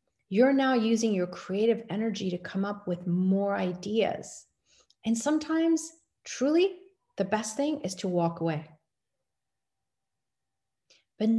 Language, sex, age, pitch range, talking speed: English, female, 40-59, 180-225 Hz, 120 wpm